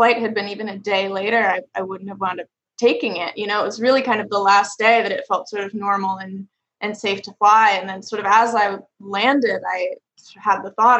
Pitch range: 200-230 Hz